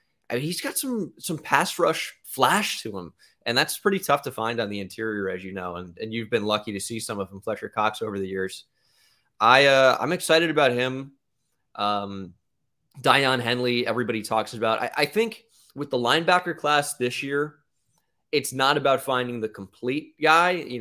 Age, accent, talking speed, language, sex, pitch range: 20-39, American, 195 wpm, English, male, 105-140 Hz